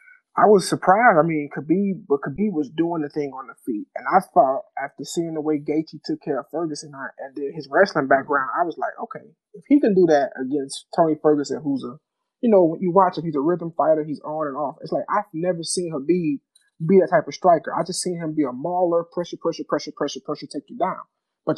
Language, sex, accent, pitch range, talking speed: English, male, American, 150-190 Hz, 245 wpm